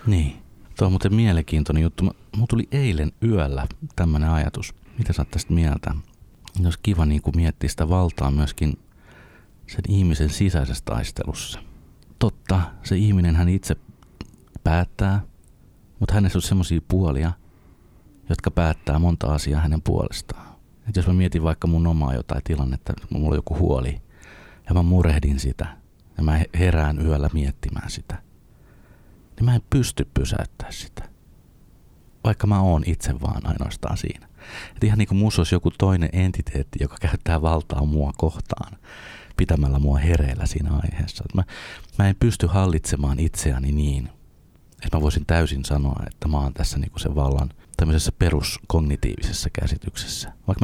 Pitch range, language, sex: 75-95 Hz, Finnish, male